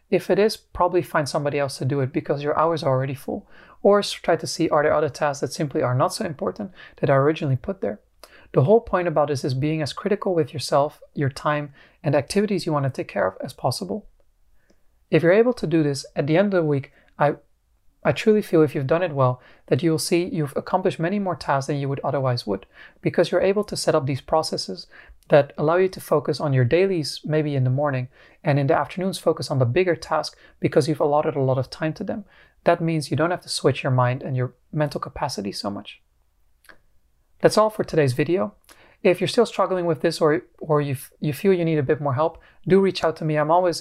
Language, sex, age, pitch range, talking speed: English, male, 30-49, 140-175 Hz, 235 wpm